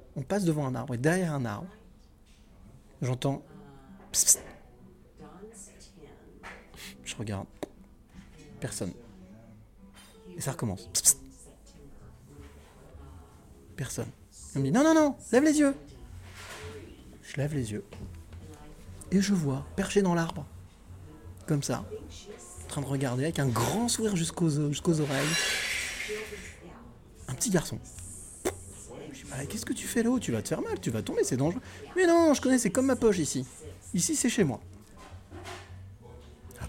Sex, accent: male, French